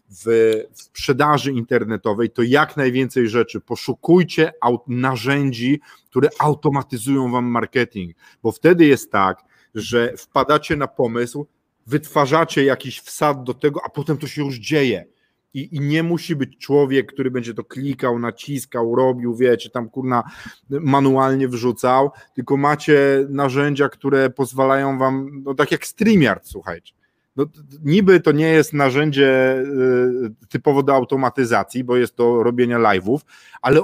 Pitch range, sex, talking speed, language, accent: 125-155 Hz, male, 135 wpm, Polish, native